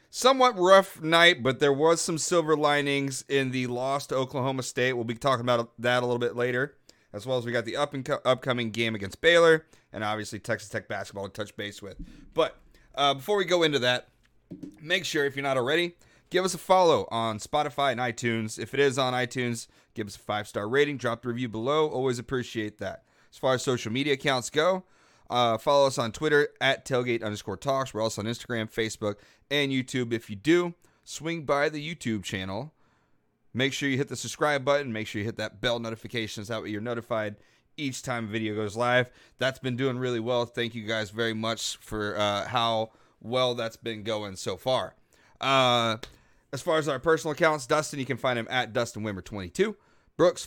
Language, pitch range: English, 115-140 Hz